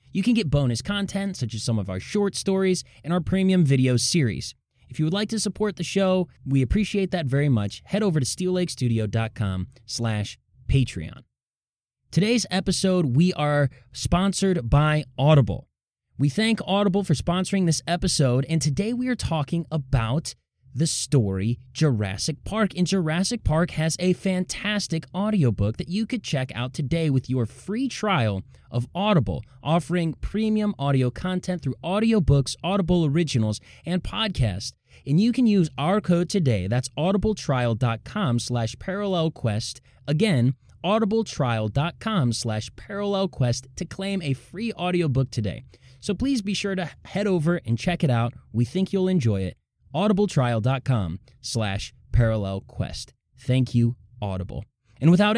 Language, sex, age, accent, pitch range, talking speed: English, male, 20-39, American, 120-190 Hz, 145 wpm